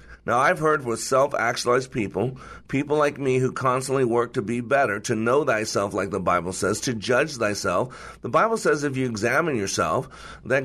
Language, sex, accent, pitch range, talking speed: English, male, American, 115-135 Hz, 185 wpm